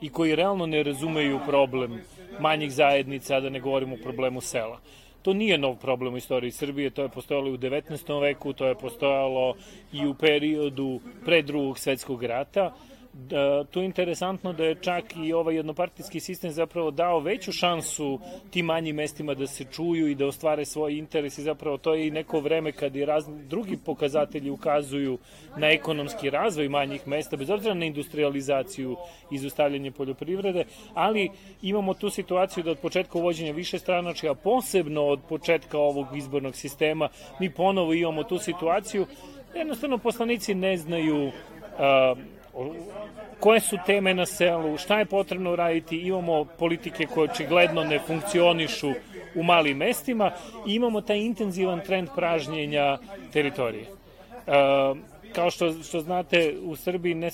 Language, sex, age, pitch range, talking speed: Croatian, male, 30-49, 140-180 Hz, 155 wpm